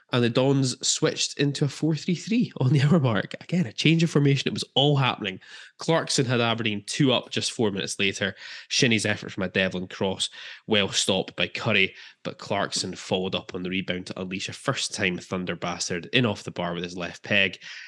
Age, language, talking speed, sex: 20-39, English, 200 wpm, male